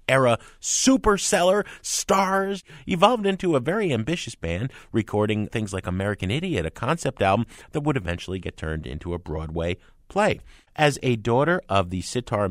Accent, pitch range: American, 95-155 Hz